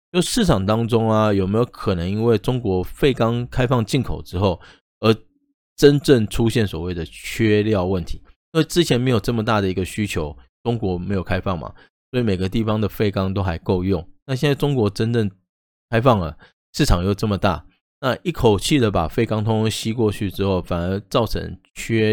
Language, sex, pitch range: Chinese, male, 90-120 Hz